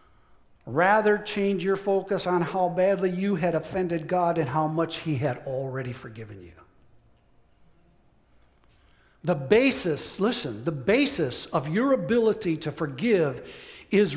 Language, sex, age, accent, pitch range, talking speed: English, male, 60-79, American, 160-210 Hz, 125 wpm